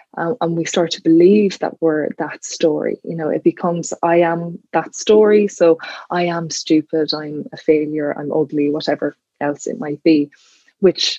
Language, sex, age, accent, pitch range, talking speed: English, female, 20-39, Irish, 155-170 Hz, 175 wpm